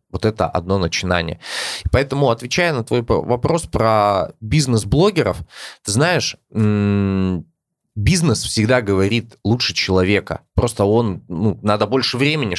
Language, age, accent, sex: Russian, 20-39, native, male